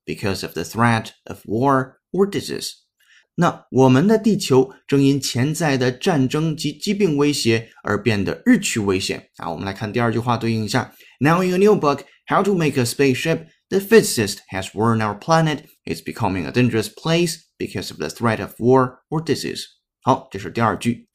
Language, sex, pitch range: Chinese, male, 115-160 Hz